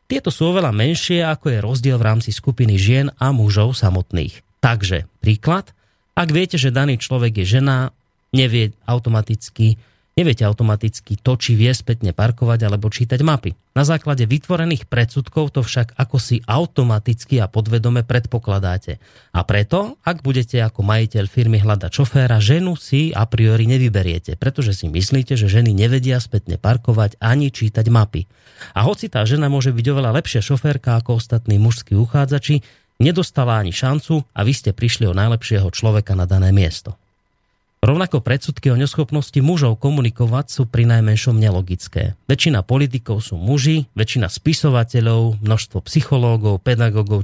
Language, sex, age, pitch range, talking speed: Slovak, male, 30-49, 110-135 Hz, 150 wpm